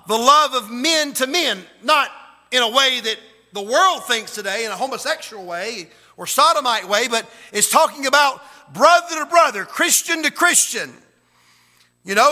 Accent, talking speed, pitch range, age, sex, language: American, 165 wpm, 225-290 Hz, 50-69, male, English